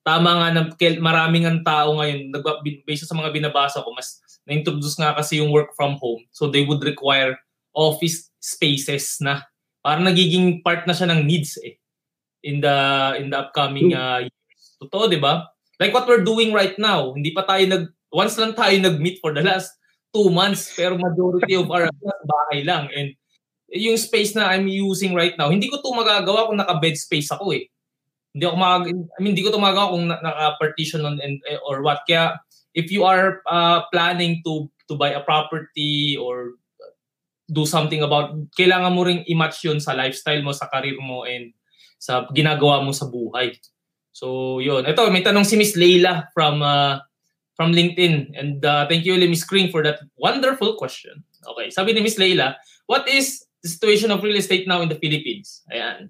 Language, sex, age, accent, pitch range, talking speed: Filipino, male, 20-39, native, 145-185 Hz, 180 wpm